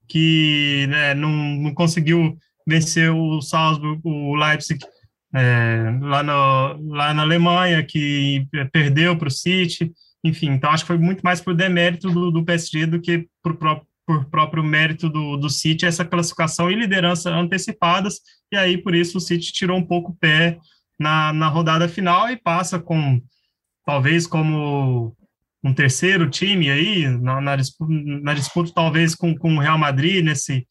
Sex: male